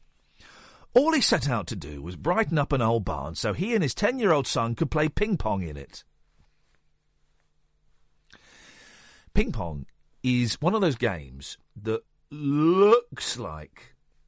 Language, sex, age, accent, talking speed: English, male, 50-69, British, 135 wpm